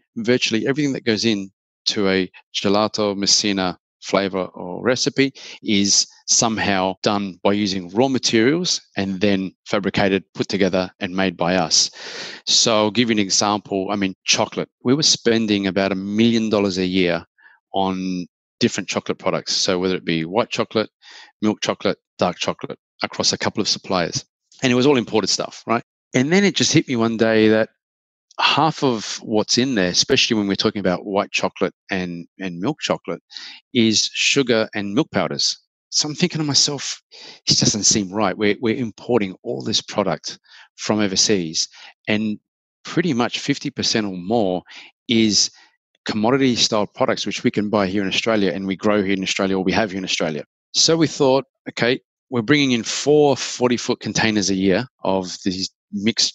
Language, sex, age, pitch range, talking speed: English, male, 30-49, 95-120 Hz, 170 wpm